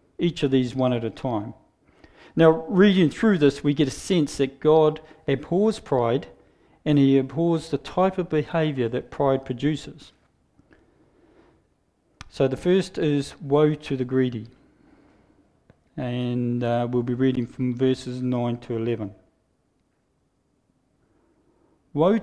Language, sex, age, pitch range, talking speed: English, male, 50-69, 130-165 Hz, 130 wpm